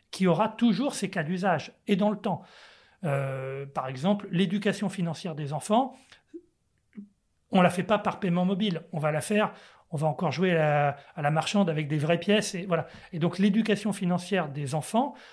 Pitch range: 155-200 Hz